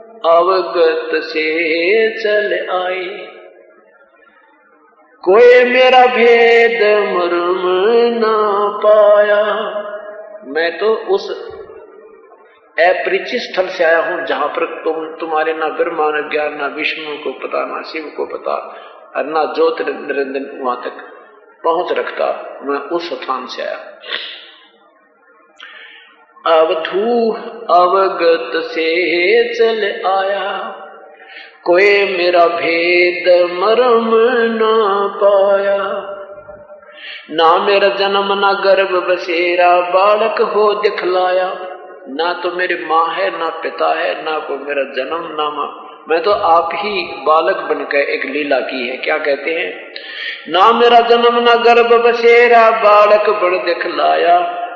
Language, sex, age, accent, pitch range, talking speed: Hindi, male, 50-69, native, 170-225 Hz, 100 wpm